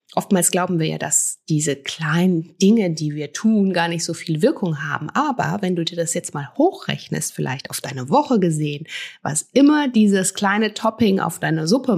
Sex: female